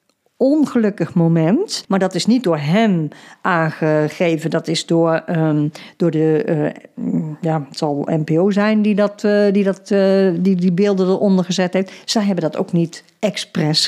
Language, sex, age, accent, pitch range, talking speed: Dutch, female, 50-69, Dutch, 180-245 Hz, 170 wpm